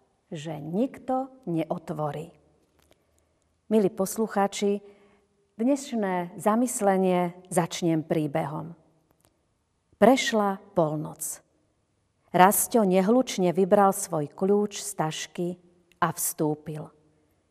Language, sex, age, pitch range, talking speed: Slovak, female, 40-59, 170-220 Hz, 70 wpm